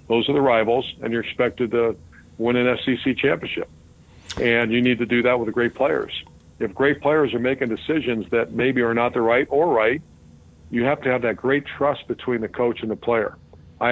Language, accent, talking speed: English, American, 215 wpm